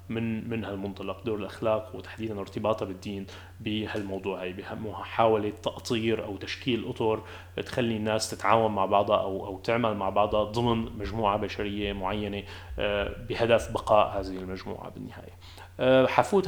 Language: English